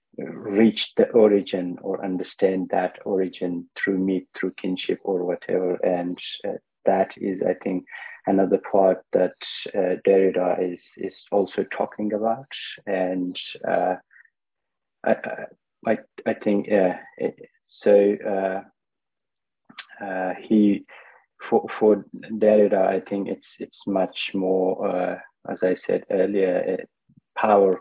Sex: male